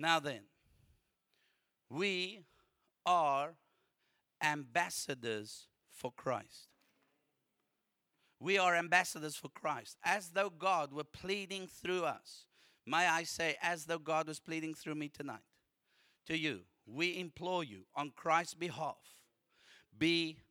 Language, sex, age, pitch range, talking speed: English, male, 50-69, 145-175 Hz, 115 wpm